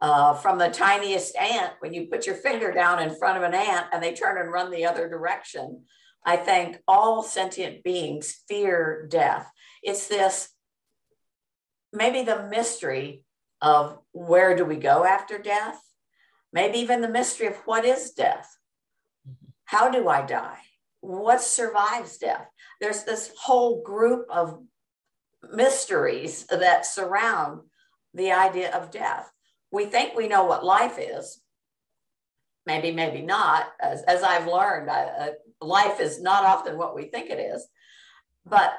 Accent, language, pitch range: American, English, 170-240 Hz